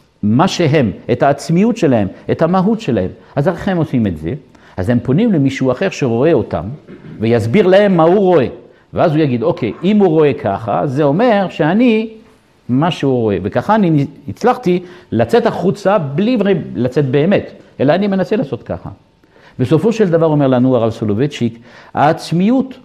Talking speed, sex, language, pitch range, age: 160 wpm, male, Hebrew, 110-175 Hz, 50-69